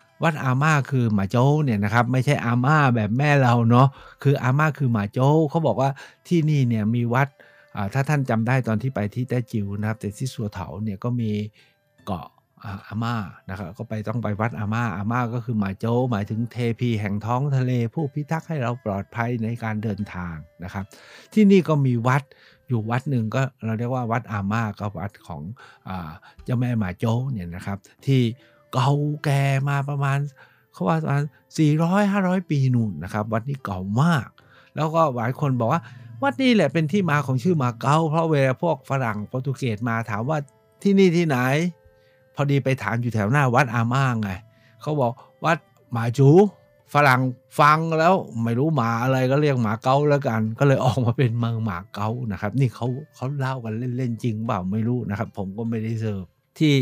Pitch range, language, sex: 110-140 Hz, Thai, male